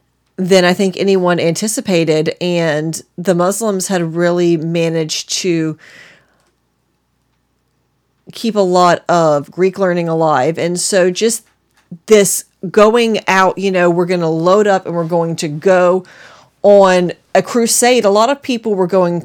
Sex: female